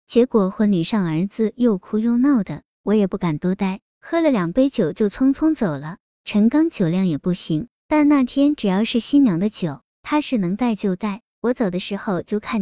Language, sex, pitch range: Chinese, male, 185-250 Hz